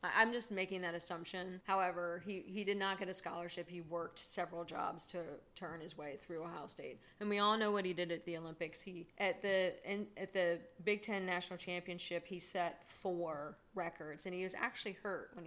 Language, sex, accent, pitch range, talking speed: English, female, American, 175-200 Hz, 210 wpm